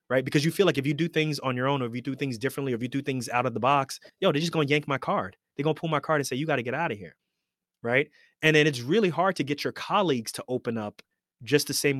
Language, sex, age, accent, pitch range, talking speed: English, male, 20-39, American, 115-140 Hz, 330 wpm